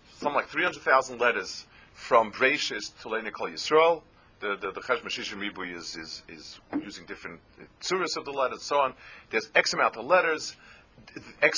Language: English